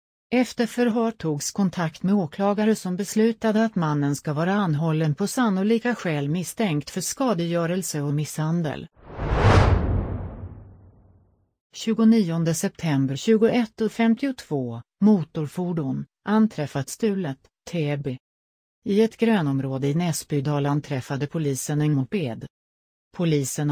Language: Swedish